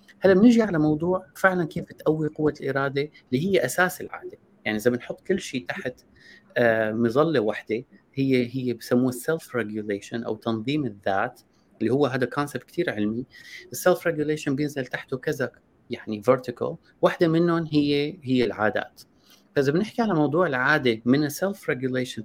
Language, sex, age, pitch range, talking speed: Arabic, male, 30-49, 120-160 Hz, 140 wpm